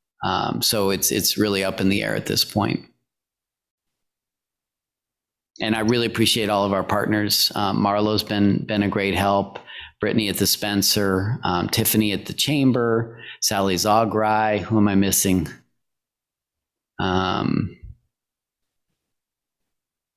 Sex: male